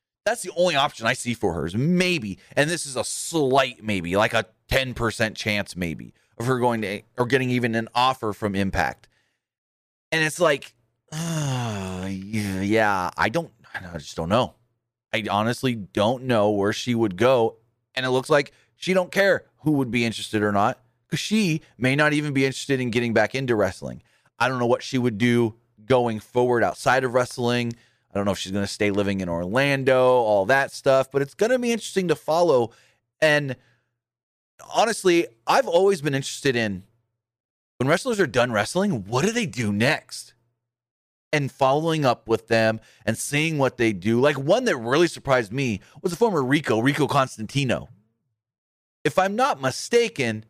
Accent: American